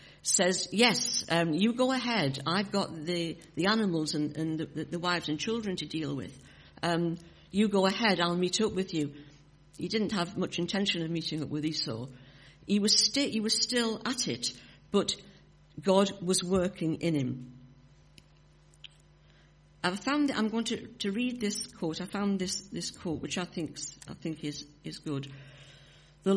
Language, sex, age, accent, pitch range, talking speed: English, female, 60-79, British, 145-195 Hz, 175 wpm